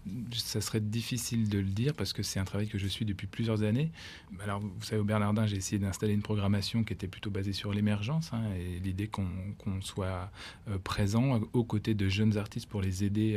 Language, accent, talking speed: French, French, 215 wpm